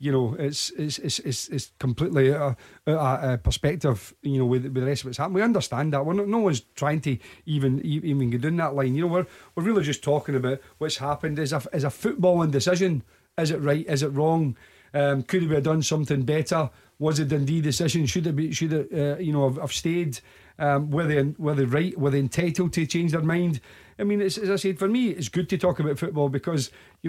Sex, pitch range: male, 135-165 Hz